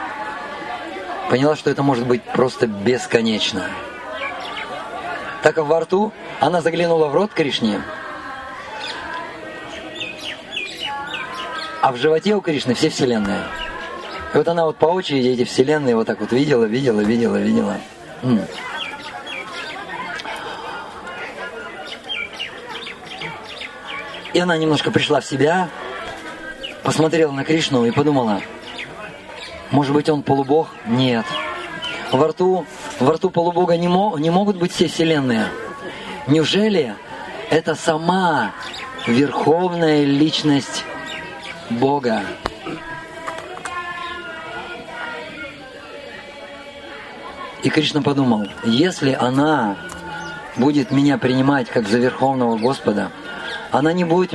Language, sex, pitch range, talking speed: Russian, male, 135-175 Hz, 95 wpm